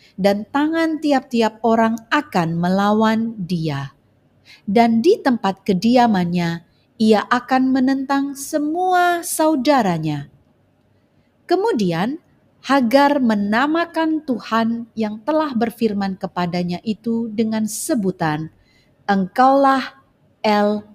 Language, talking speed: Indonesian, 85 wpm